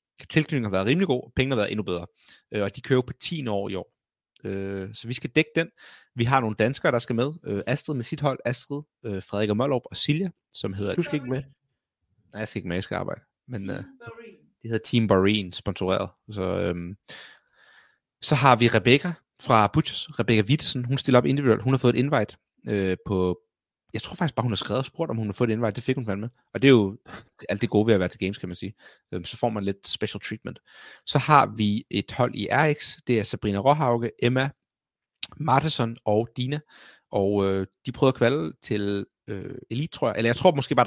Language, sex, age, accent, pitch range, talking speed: Danish, male, 30-49, native, 100-135 Hz, 240 wpm